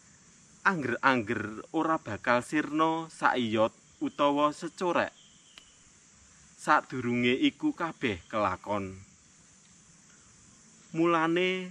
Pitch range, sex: 120-170 Hz, male